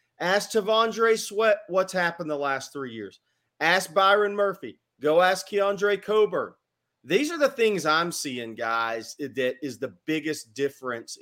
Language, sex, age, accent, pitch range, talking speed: English, male, 40-59, American, 140-190 Hz, 150 wpm